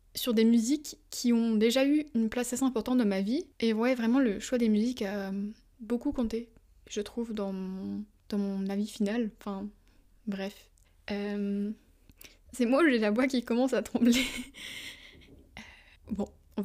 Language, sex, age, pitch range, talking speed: French, female, 20-39, 210-255 Hz, 170 wpm